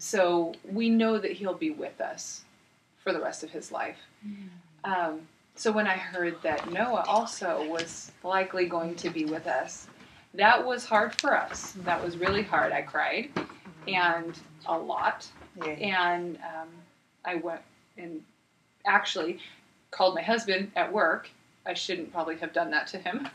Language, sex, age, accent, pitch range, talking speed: English, female, 30-49, American, 165-215 Hz, 160 wpm